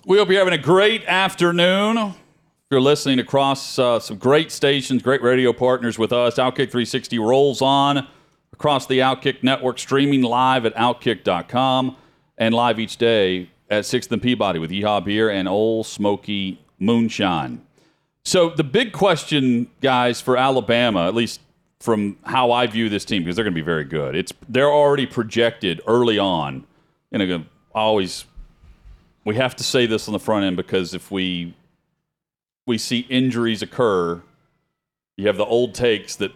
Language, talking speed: English, 160 wpm